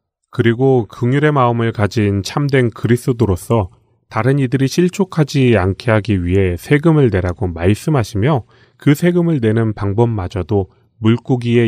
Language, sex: Korean, male